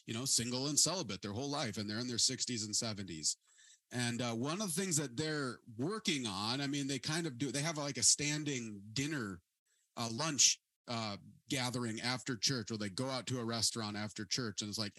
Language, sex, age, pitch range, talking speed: English, male, 30-49, 115-145 Hz, 220 wpm